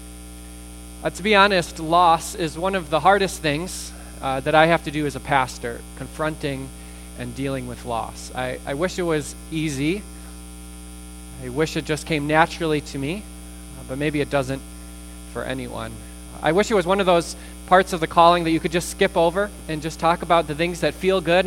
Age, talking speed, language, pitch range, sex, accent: 20-39, 200 wpm, English, 125-185 Hz, male, American